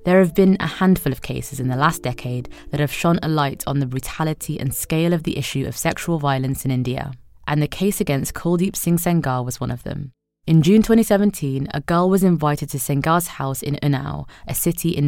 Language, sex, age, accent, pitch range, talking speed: English, female, 20-39, British, 135-170 Hz, 220 wpm